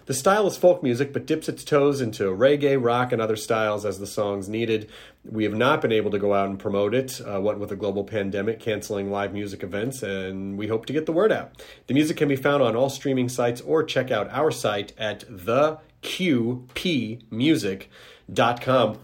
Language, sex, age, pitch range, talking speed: English, male, 30-49, 110-150 Hz, 200 wpm